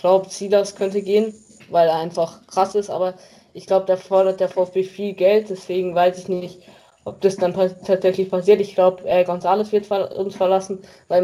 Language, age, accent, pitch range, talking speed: German, 20-39, German, 170-190 Hz, 210 wpm